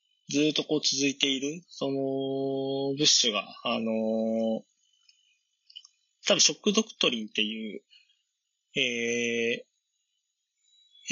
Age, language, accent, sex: 20-39, Japanese, native, male